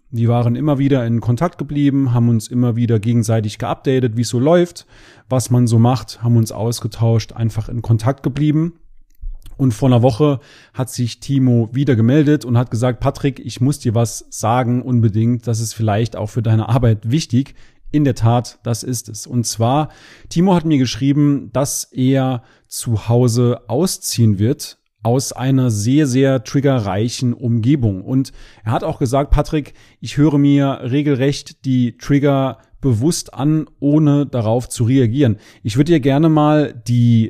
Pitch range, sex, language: 115-145 Hz, male, German